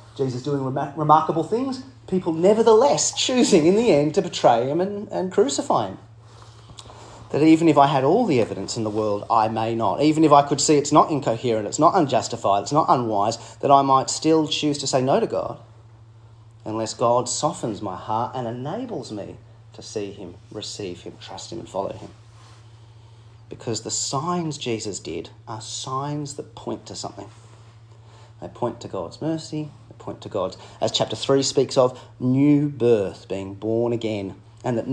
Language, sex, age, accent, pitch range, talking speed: English, male, 30-49, Australian, 110-140 Hz, 180 wpm